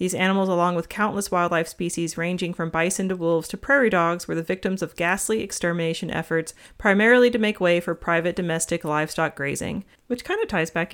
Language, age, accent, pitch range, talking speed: English, 30-49, American, 170-215 Hz, 195 wpm